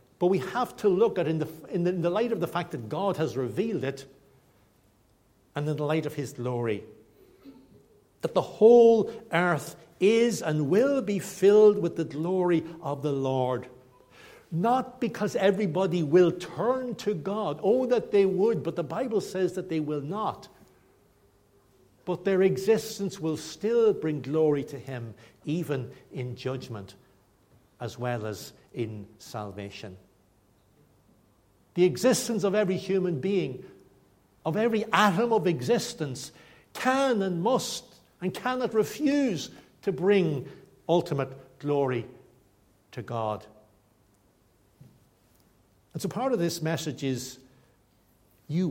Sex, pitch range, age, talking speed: male, 120-190 Hz, 60-79, 130 wpm